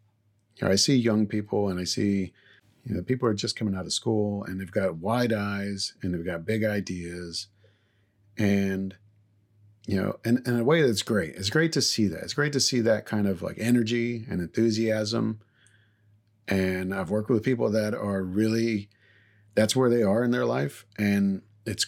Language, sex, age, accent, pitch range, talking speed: English, male, 40-59, American, 100-115 Hz, 195 wpm